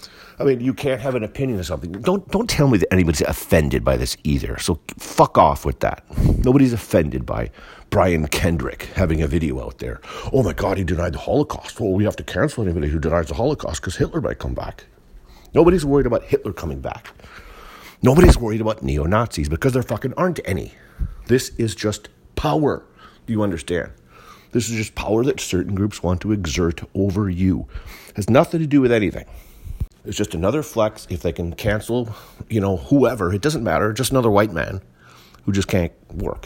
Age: 50-69